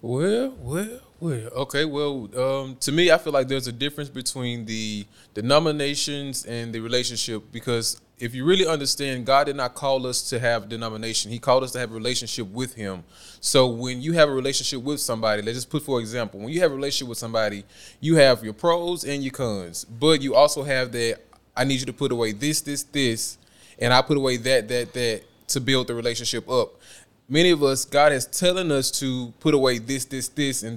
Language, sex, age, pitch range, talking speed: English, male, 20-39, 115-145 Hz, 215 wpm